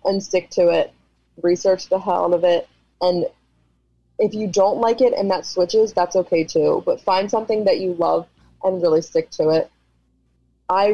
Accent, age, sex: American, 20-39, female